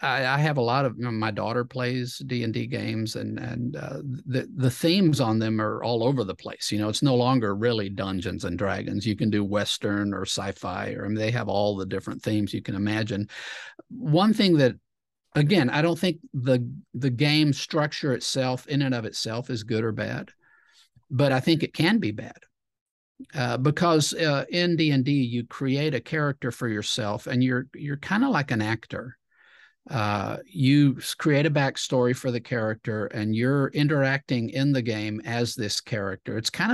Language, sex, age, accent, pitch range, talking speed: English, male, 50-69, American, 110-135 Hz, 185 wpm